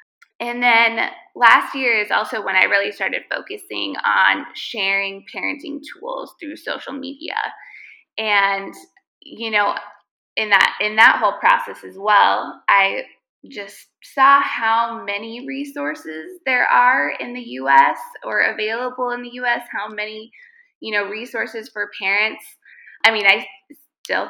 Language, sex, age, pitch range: English, female, 20-39, 205-320 Hz